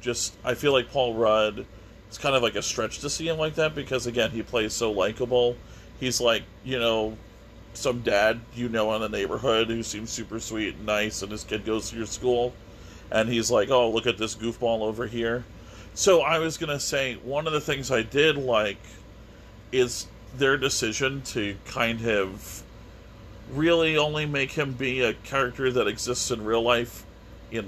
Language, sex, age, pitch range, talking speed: English, male, 40-59, 105-125 Hz, 195 wpm